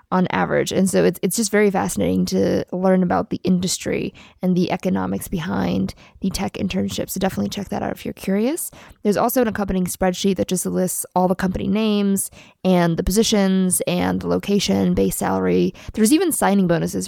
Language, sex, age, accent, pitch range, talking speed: English, female, 20-39, American, 175-205 Hz, 185 wpm